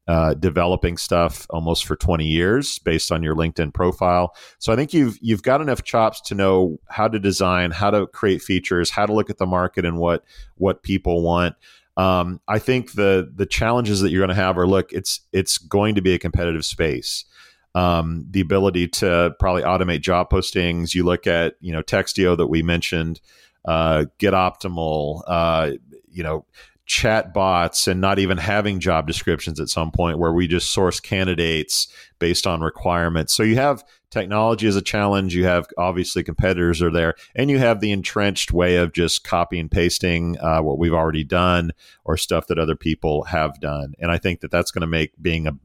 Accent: American